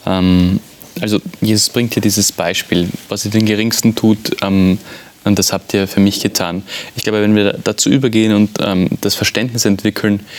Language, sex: German, male